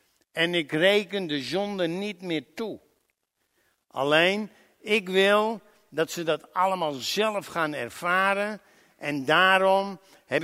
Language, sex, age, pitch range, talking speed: Dutch, male, 60-79, 160-205 Hz, 120 wpm